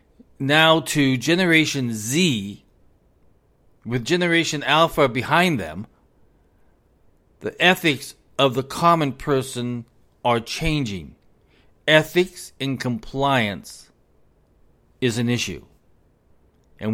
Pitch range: 110-150 Hz